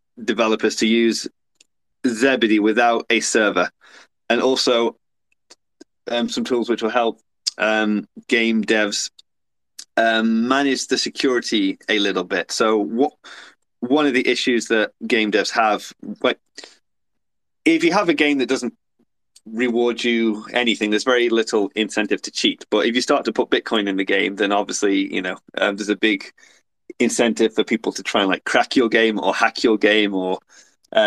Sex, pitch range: male, 105-120 Hz